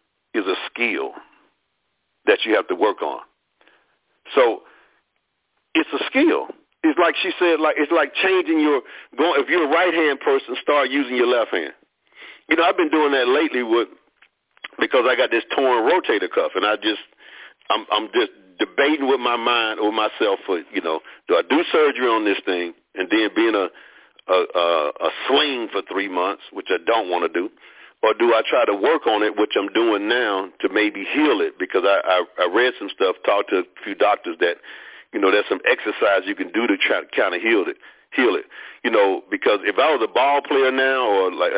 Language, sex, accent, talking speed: English, male, American, 210 wpm